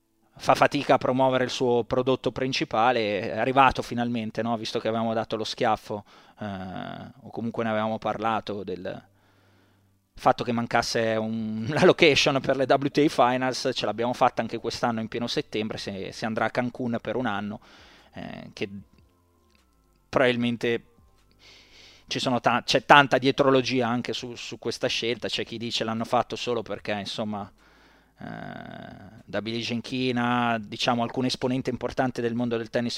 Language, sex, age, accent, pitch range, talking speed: Italian, male, 20-39, native, 110-130 Hz, 155 wpm